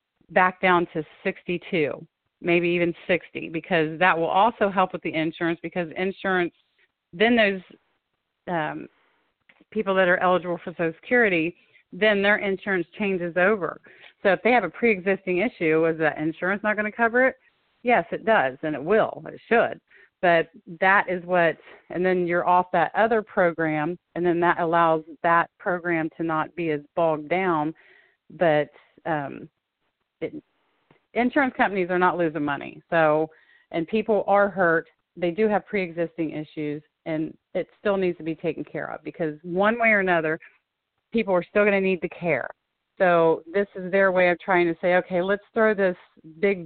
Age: 40-59